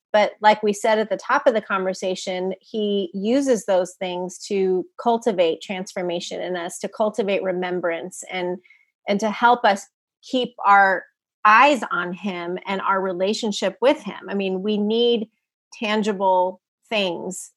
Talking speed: 145 wpm